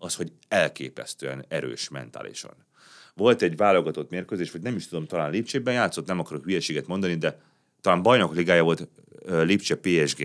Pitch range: 75-100 Hz